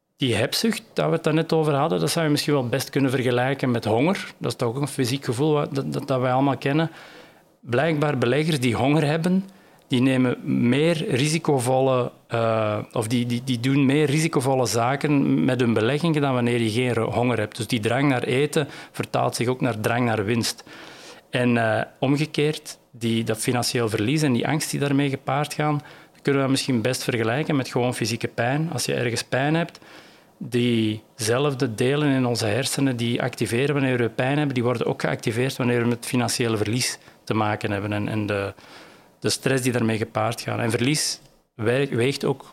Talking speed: 190 wpm